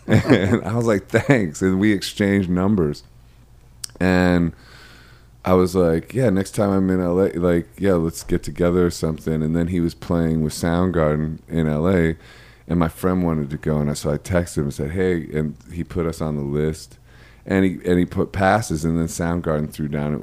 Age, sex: 30-49, male